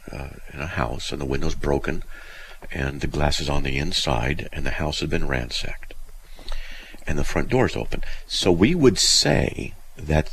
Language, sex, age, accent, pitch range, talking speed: English, male, 50-69, American, 70-90 Hz, 185 wpm